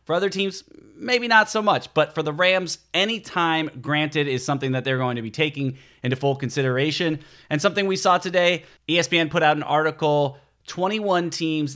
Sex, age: male, 30-49